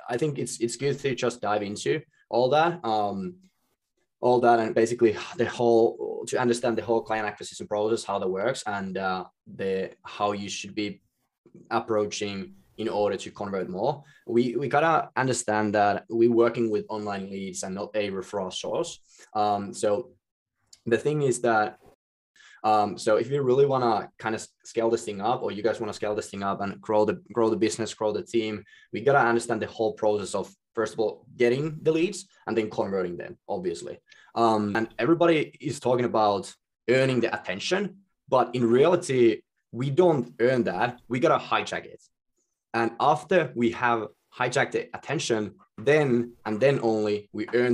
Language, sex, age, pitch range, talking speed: English, male, 20-39, 105-125 Hz, 180 wpm